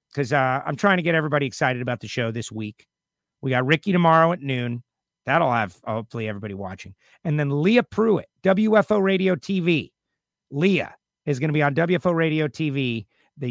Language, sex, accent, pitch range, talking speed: English, male, American, 125-160 Hz, 180 wpm